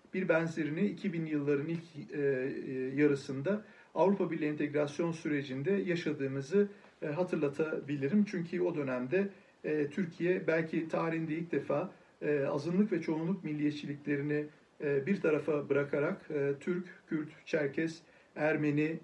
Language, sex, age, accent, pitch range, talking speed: Turkish, male, 50-69, native, 140-175 Hz, 115 wpm